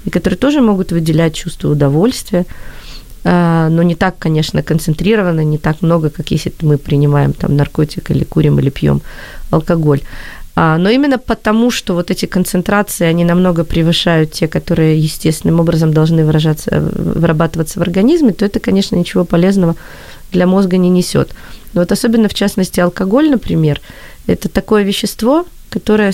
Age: 30-49